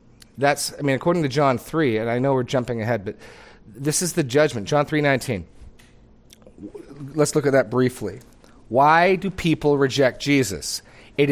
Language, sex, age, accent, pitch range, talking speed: English, male, 30-49, American, 110-145 Hz, 170 wpm